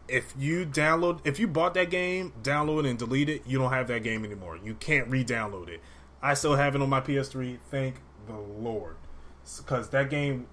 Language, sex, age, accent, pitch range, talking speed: English, male, 20-39, American, 100-135 Hz, 205 wpm